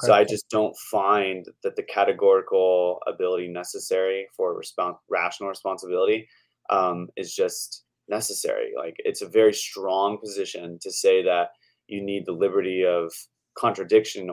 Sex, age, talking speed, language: male, 20-39, 140 wpm, English